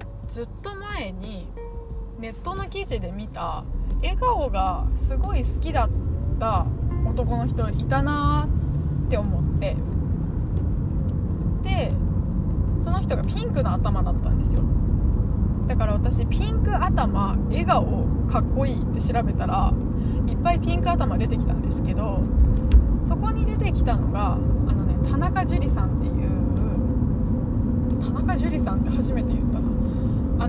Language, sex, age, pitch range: Japanese, female, 20-39, 85-110 Hz